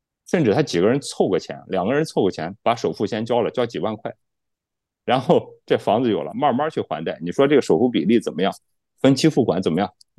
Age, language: 30-49, Chinese